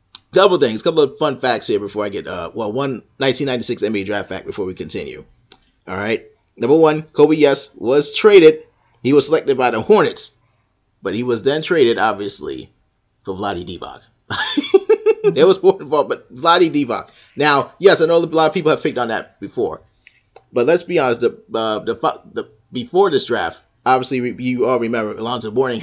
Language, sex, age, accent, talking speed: English, male, 30-49, American, 185 wpm